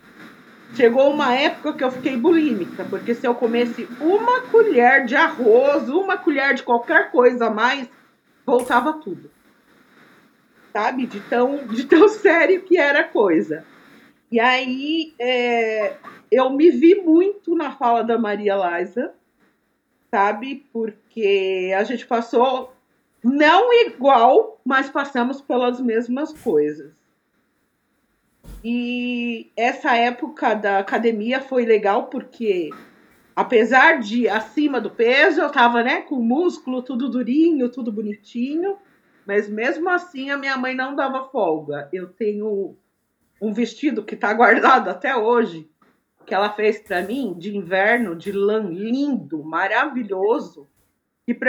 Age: 40-59